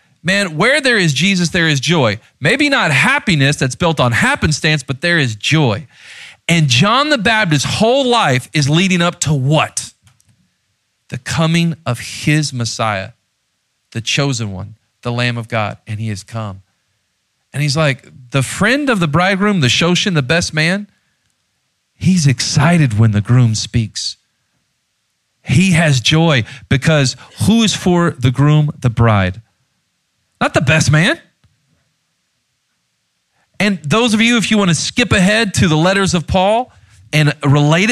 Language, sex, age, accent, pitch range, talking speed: English, male, 40-59, American, 115-175 Hz, 155 wpm